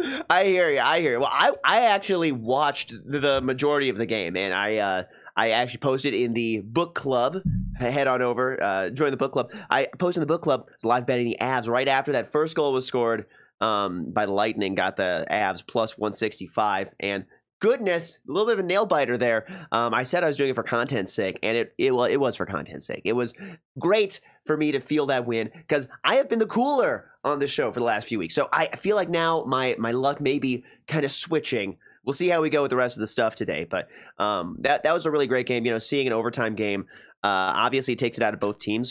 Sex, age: male, 30-49